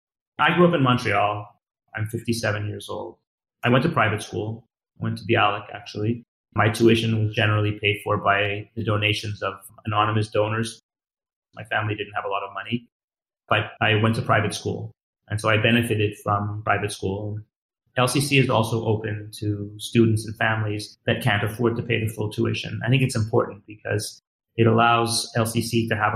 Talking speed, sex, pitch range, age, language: 180 wpm, male, 105-115 Hz, 30-49, English